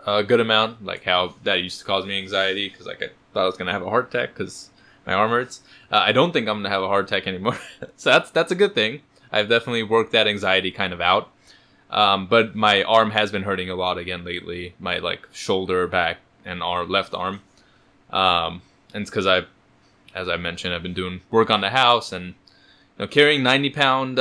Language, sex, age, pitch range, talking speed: English, male, 20-39, 90-115 Hz, 230 wpm